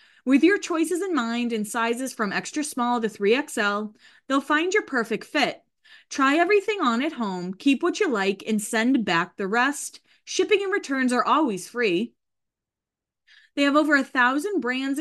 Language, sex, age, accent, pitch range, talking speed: English, female, 20-39, American, 200-295 Hz, 170 wpm